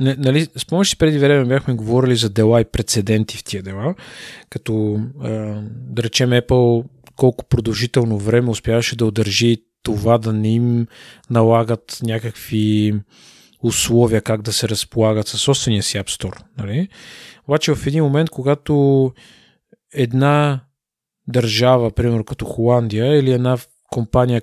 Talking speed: 135 wpm